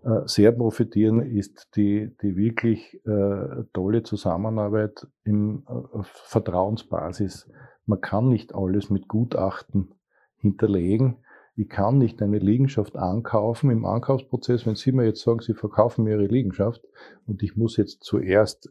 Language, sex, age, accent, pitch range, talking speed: German, male, 50-69, Austrian, 100-115 Hz, 135 wpm